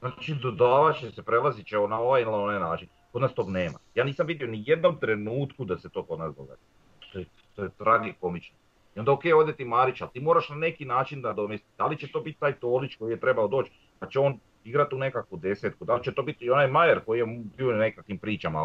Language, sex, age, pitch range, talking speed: Croatian, male, 40-59, 105-140 Hz, 235 wpm